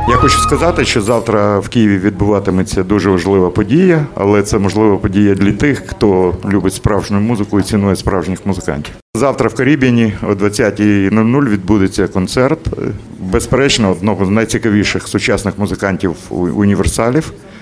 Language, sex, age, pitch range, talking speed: Russian, male, 50-69, 95-115 Hz, 135 wpm